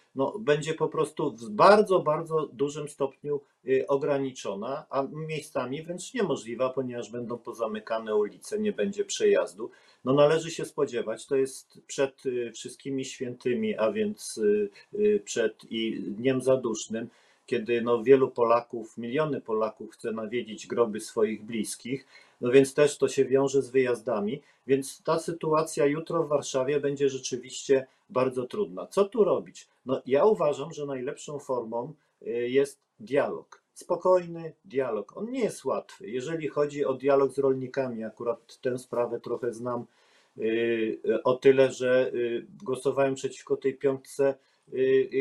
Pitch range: 125-155 Hz